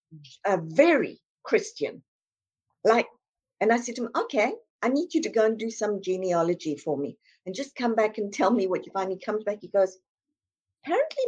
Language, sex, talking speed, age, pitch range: English, female, 195 wpm, 50-69, 205-280 Hz